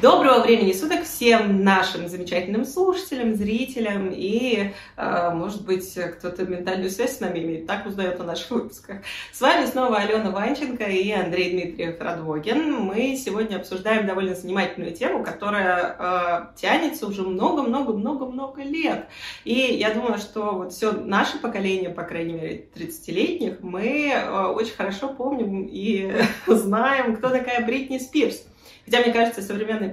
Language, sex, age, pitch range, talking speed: Russian, female, 20-39, 190-245 Hz, 140 wpm